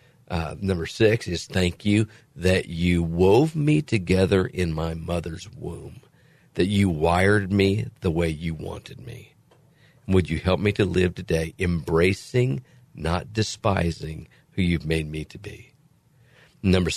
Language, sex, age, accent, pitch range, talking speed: English, male, 50-69, American, 85-110 Hz, 145 wpm